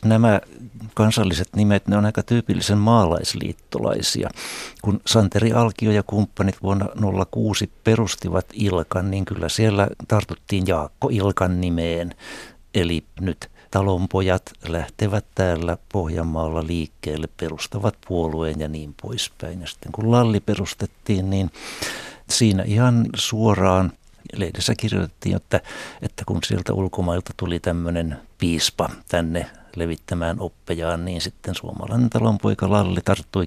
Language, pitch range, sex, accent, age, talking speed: Finnish, 85-105 Hz, male, native, 60-79, 115 wpm